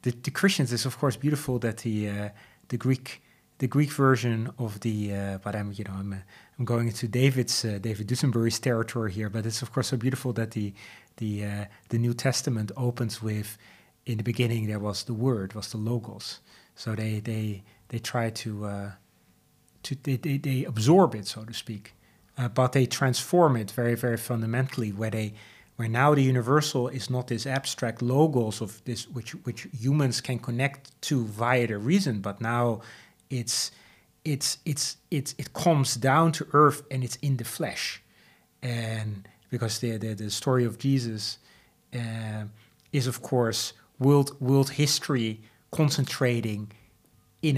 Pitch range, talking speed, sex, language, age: 110-135 Hz, 170 wpm, male, English, 30-49